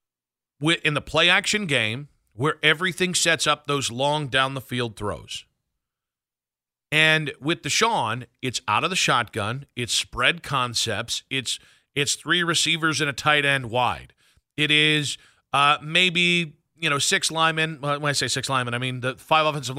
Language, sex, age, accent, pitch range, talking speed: English, male, 40-59, American, 130-165 Hz, 160 wpm